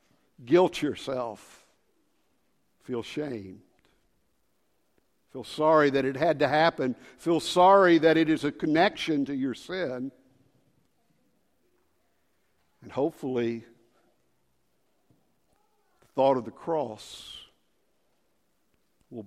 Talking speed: 90 wpm